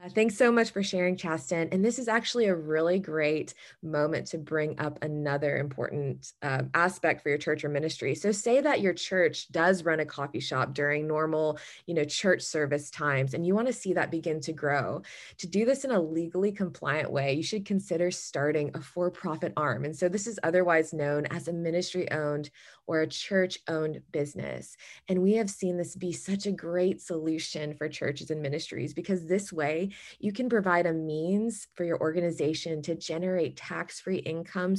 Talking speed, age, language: 190 wpm, 20-39, English